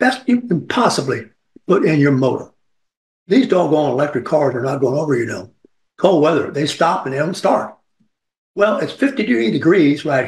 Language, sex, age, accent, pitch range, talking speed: English, male, 60-79, American, 135-195 Hz, 180 wpm